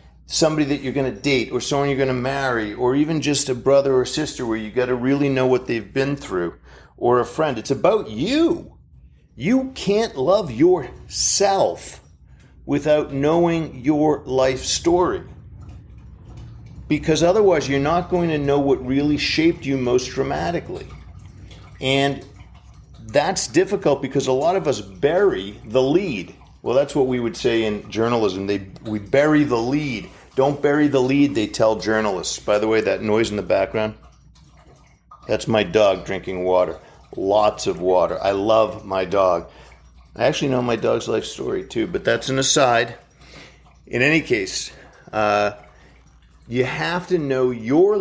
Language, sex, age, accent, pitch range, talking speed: English, male, 50-69, American, 110-155 Hz, 160 wpm